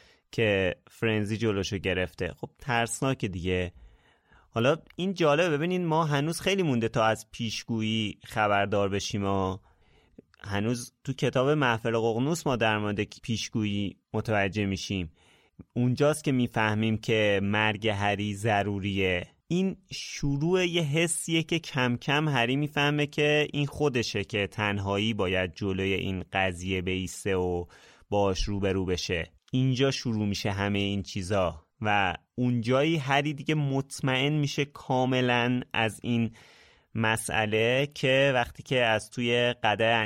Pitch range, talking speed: 100-130 Hz, 125 wpm